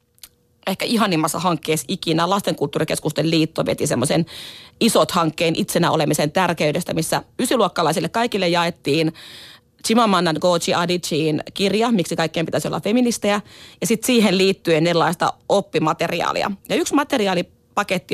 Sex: female